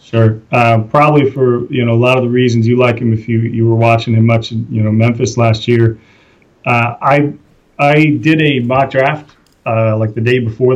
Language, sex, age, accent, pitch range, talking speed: English, male, 30-49, American, 110-120 Hz, 210 wpm